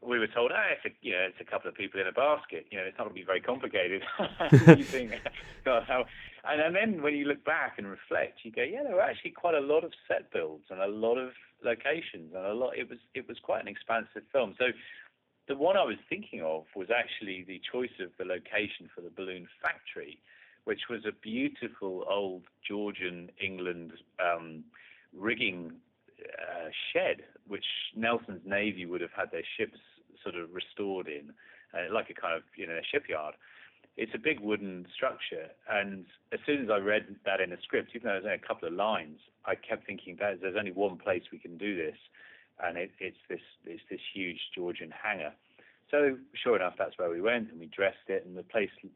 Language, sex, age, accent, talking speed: English, male, 40-59, British, 210 wpm